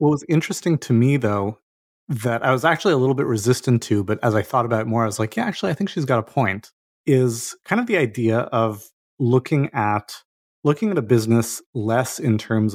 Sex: male